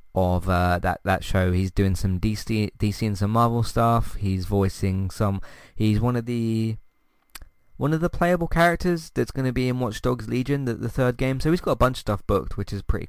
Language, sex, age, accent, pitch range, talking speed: English, male, 20-39, British, 95-125 Hz, 225 wpm